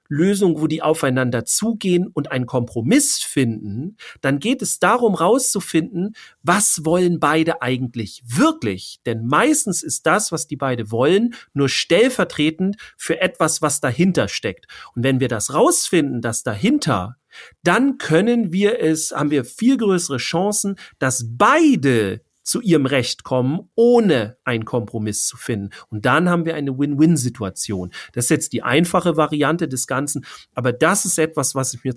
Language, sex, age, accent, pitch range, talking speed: German, male, 40-59, German, 120-165 Hz, 155 wpm